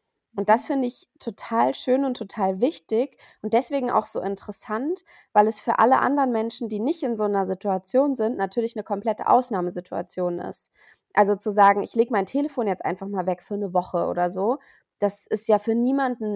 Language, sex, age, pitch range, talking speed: English, female, 20-39, 200-235 Hz, 195 wpm